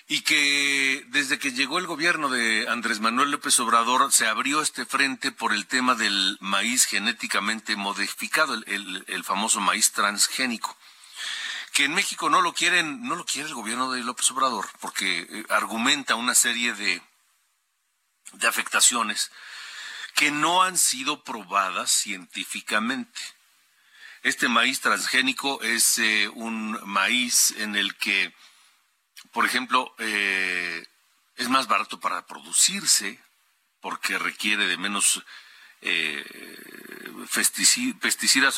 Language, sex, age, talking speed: Spanish, male, 50-69, 125 wpm